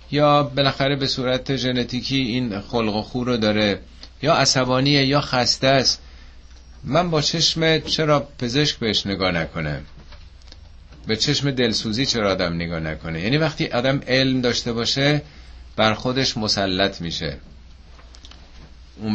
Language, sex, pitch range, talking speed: Persian, male, 80-130 Hz, 130 wpm